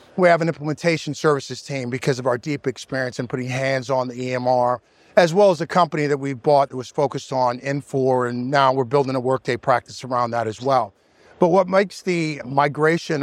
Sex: male